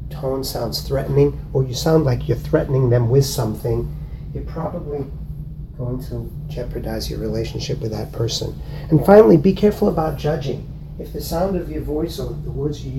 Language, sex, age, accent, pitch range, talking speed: English, male, 40-59, American, 130-155 Hz, 175 wpm